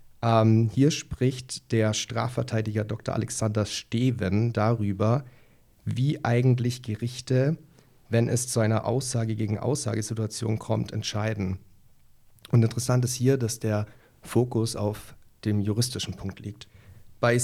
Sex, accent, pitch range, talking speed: male, German, 110-125 Hz, 110 wpm